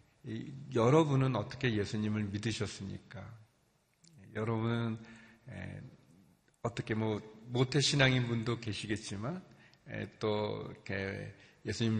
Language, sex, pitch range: Korean, male, 105-125 Hz